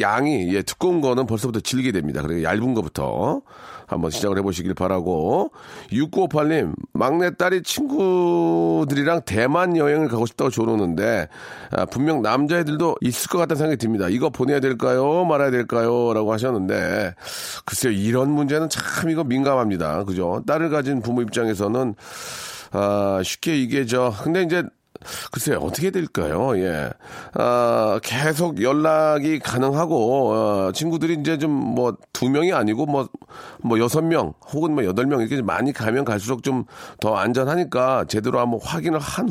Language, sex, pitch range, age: Korean, male, 110-165 Hz, 40-59